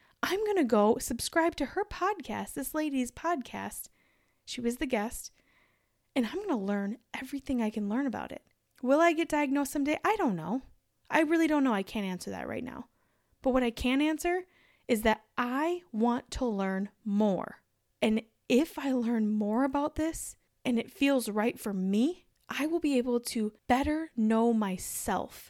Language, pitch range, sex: English, 215-280 Hz, female